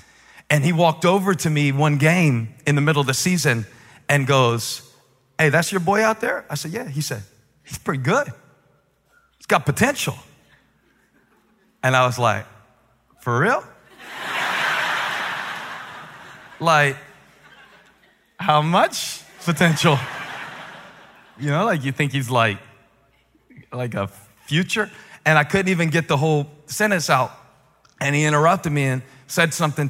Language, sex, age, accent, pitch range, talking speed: English, male, 40-59, American, 130-155 Hz, 140 wpm